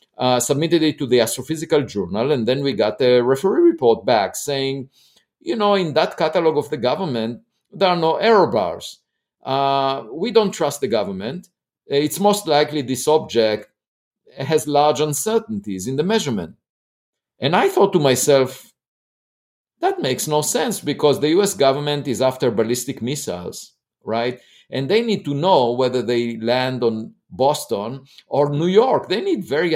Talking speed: 160 wpm